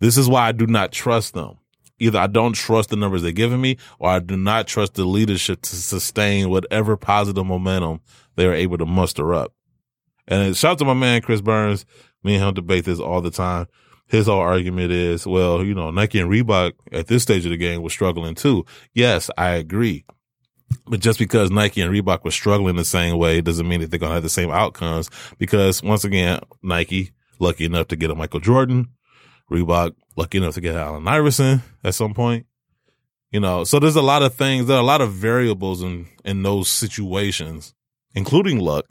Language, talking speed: English, 210 wpm